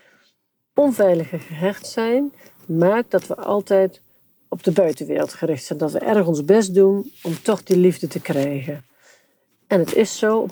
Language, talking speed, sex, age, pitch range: Dutch, 165 wpm, female, 50-69, 170-210 Hz